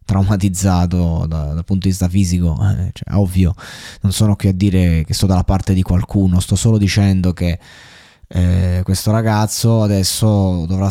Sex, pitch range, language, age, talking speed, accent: male, 90-105 Hz, Italian, 20-39, 155 wpm, native